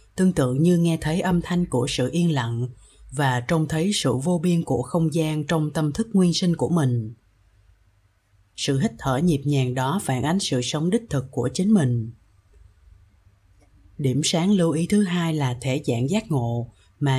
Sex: female